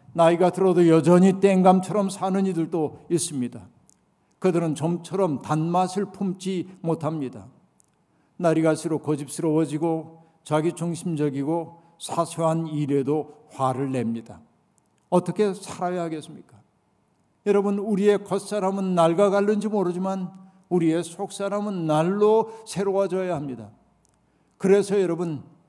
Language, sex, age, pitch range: Korean, male, 60-79, 155-190 Hz